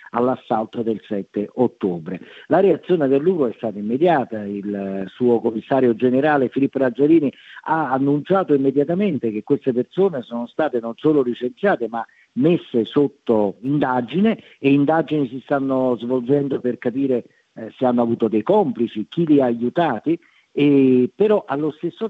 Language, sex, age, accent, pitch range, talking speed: Italian, male, 50-69, native, 115-150 Hz, 140 wpm